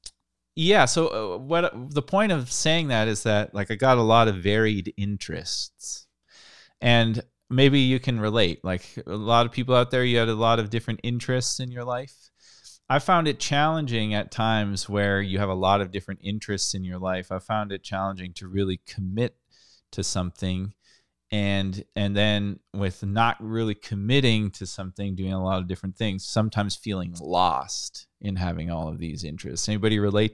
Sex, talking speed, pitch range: male, 180 wpm, 95-115 Hz